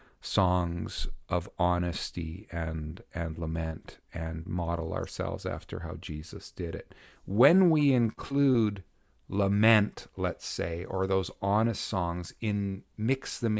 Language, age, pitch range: English, 40-59, 85-110 Hz